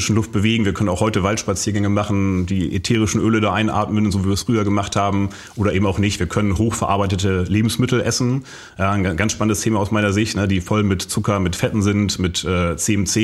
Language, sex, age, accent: German, male, 30-49, German